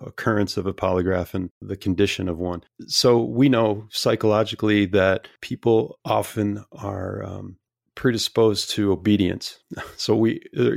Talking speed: 130 wpm